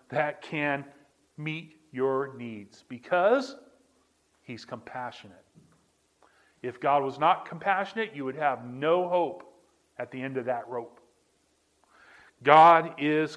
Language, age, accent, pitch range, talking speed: English, 40-59, American, 130-180 Hz, 115 wpm